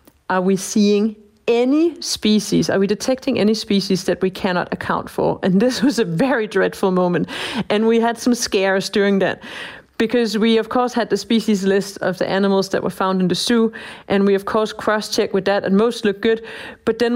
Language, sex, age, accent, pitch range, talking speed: English, female, 40-59, Danish, 195-235 Hz, 205 wpm